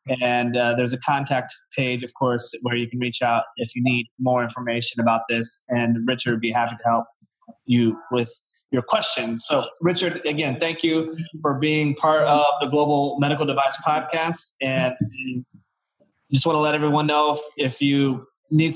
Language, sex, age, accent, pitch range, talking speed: English, male, 20-39, American, 125-145 Hz, 180 wpm